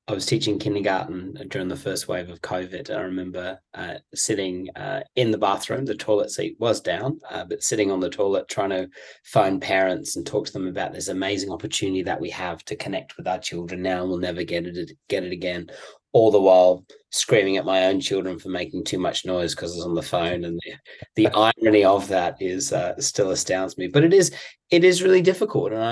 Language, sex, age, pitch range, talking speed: English, male, 30-49, 95-125 Hz, 220 wpm